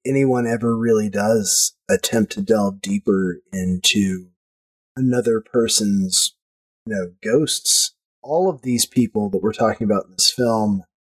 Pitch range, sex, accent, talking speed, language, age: 100-140 Hz, male, American, 135 wpm, English, 30-49